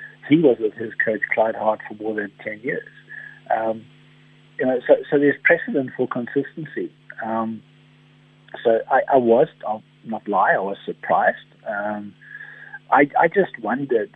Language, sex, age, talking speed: English, male, 40-59, 155 wpm